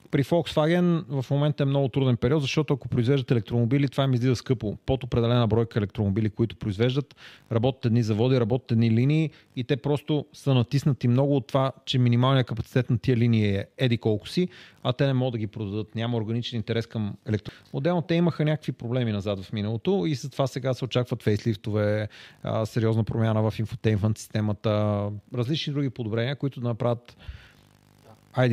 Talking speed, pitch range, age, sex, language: 175 wpm, 110-140 Hz, 40-59, male, Bulgarian